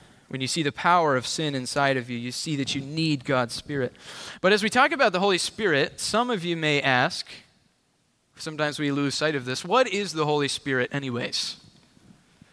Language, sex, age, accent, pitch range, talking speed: English, male, 20-39, American, 140-180 Hz, 200 wpm